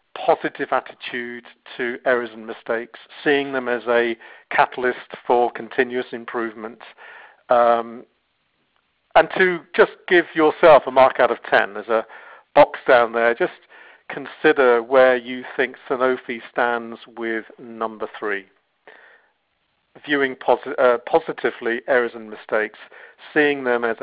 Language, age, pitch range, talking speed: English, 50-69, 115-135 Hz, 120 wpm